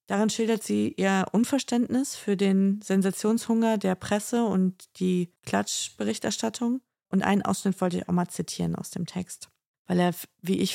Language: German